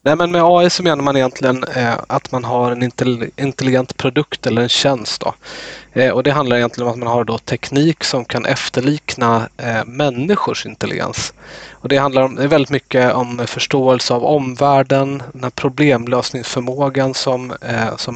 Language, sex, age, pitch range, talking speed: Swedish, male, 20-39, 120-140 Hz, 150 wpm